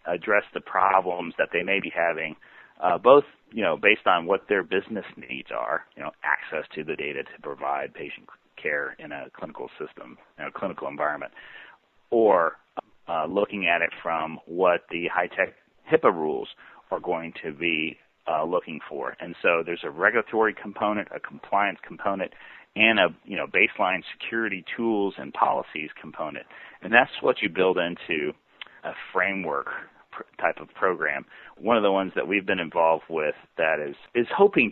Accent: American